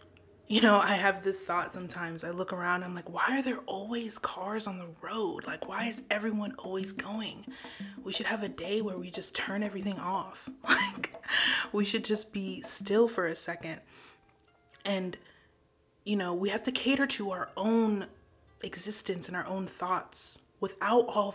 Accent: American